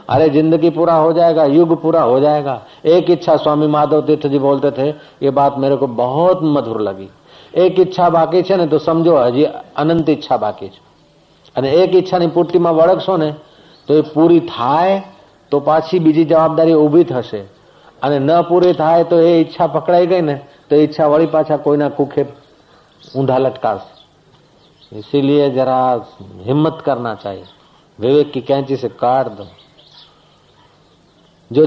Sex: male